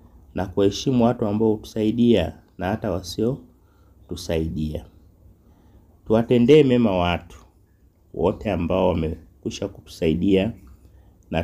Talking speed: 85 wpm